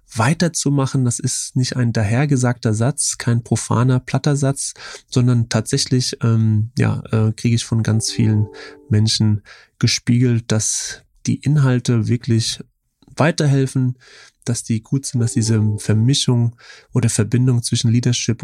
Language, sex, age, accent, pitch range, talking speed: German, male, 30-49, German, 115-135 Hz, 125 wpm